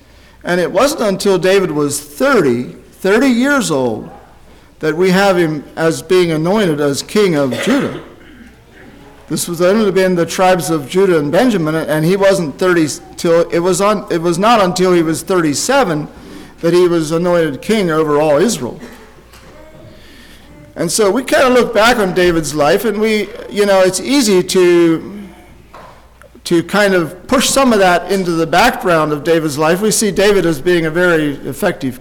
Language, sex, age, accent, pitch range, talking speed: English, male, 50-69, American, 155-195 Hz, 170 wpm